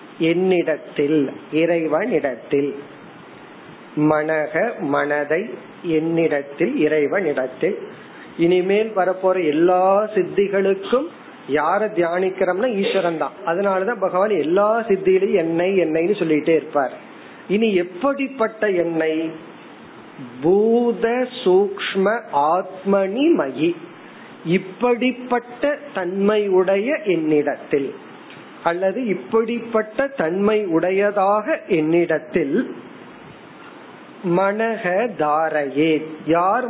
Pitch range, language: 160-225 Hz, Tamil